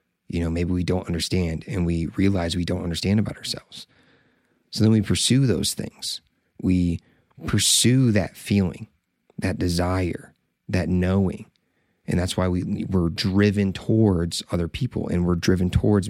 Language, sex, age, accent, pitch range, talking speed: English, male, 30-49, American, 90-110 Hz, 155 wpm